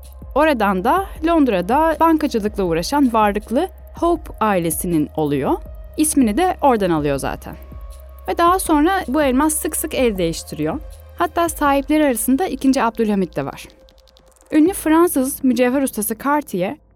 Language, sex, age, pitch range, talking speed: Turkish, female, 10-29, 180-275 Hz, 125 wpm